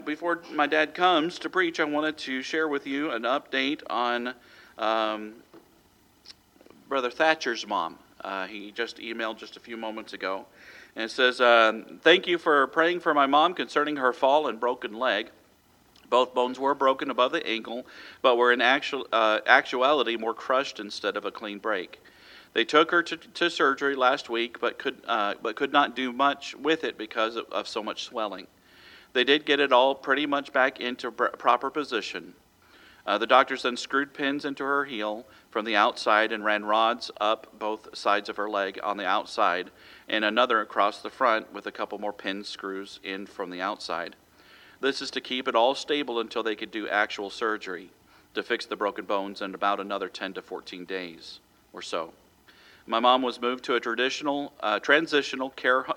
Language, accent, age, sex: English, American, 40-59, male